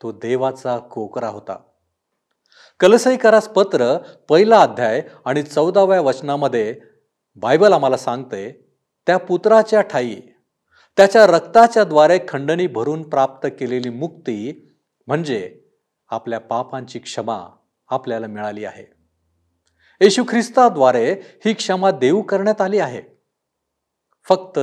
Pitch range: 120-180 Hz